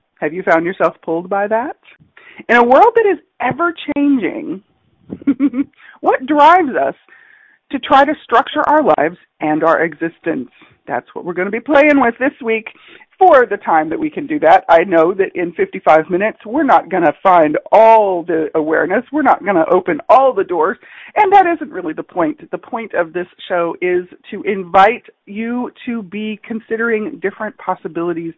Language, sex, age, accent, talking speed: English, female, 40-59, American, 180 wpm